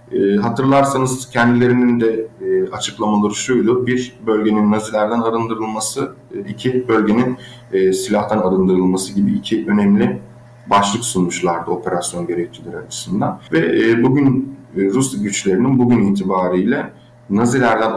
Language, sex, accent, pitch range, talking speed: Turkish, male, native, 100-120 Hz, 95 wpm